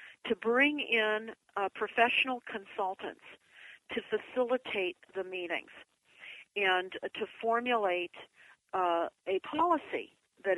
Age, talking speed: 50-69, 95 wpm